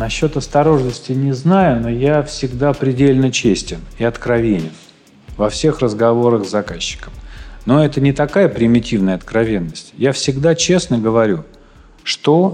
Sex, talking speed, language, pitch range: male, 130 wpm, Russian, 110-145 Hz